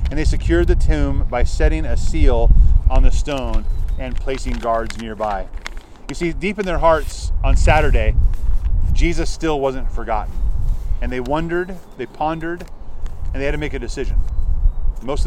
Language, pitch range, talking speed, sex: English, 75-110 Hz, 160 wpm, male